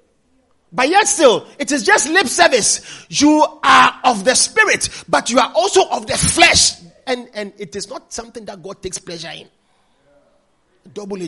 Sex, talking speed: male, 170 wpm